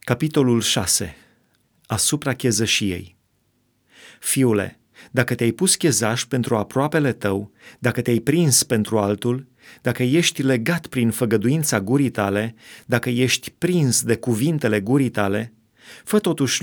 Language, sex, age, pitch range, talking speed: Romanian, male, 30-49, 110-135 Hz, 120 wpm